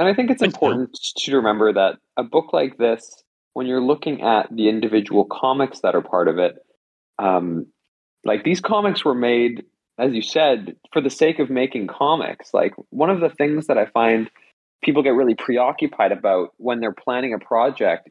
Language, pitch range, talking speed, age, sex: English, 110-140 Hz, 190 wpm, 20-39, male